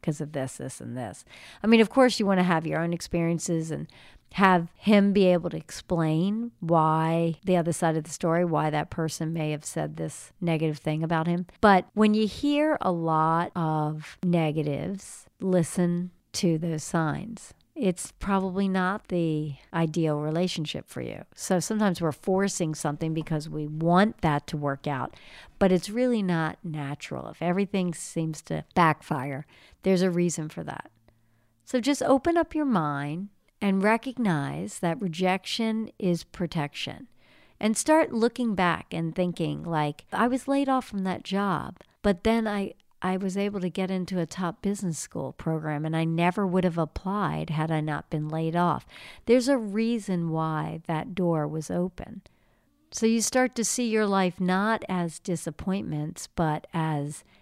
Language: English